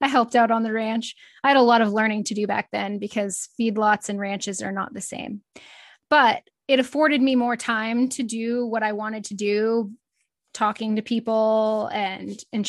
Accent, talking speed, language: American, 200 wpm, English